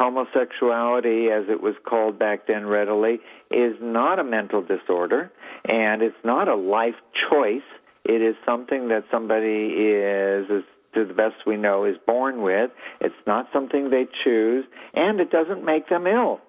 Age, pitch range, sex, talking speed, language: 60-79, 105-125 Hz, male, 165 wpm, English